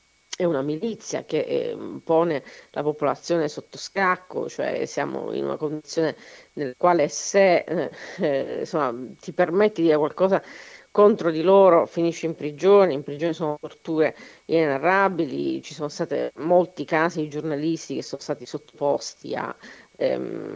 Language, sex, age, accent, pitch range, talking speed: Italian, female, 40-59, native, 155-190 Hz, 145 wpm